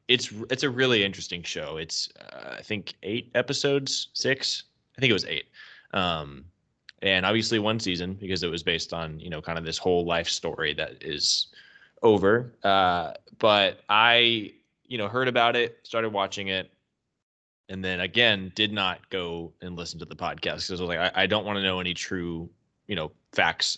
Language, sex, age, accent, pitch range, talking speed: English, male, 20-39, American, 85-105 Hz, 190 wpm